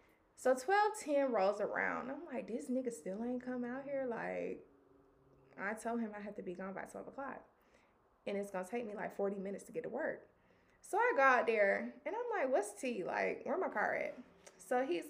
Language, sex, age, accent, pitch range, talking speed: English, female, 20-39, American, 205-285 Hz, 220 wpm